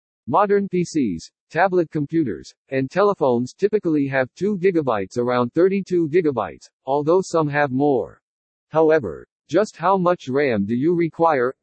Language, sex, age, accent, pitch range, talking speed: English, male, 50-69, American, 130-175 Hz, 120 wpm